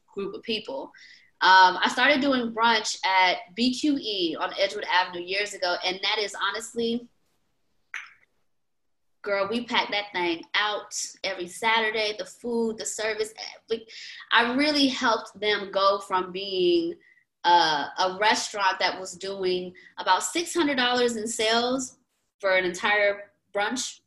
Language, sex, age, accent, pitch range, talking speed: English, female, 20-39, American, 195-260 Hz, 130 wpm